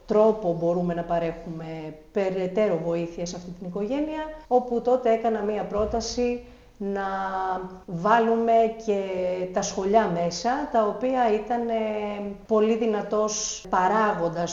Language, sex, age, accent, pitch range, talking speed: Greek, female, 40-59, native, 180-230 Hz, 110 wpm